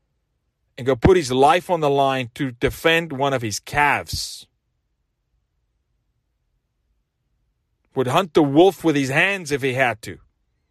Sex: male